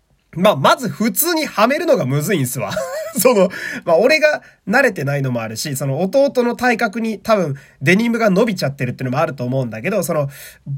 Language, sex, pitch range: Japanese, male, 135-220 Hz